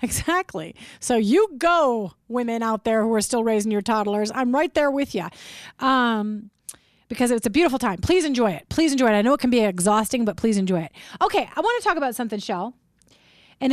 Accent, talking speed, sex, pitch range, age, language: American, 210 wpm, female, 195-250 Hz, 30-49, English